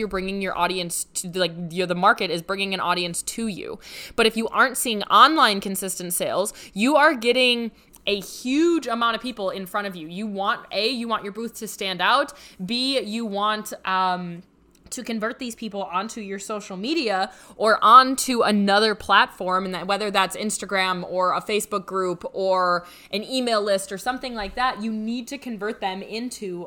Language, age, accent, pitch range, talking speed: English, 20-39, American, 185-225 Hz, 185 wpm